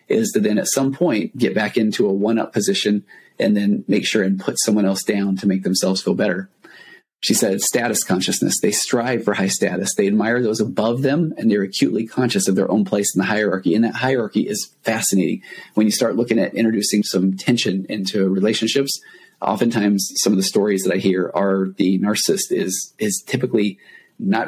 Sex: male